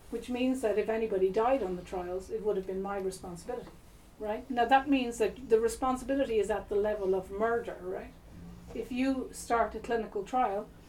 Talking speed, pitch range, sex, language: 195 wpm, 200-245 Hz, female, English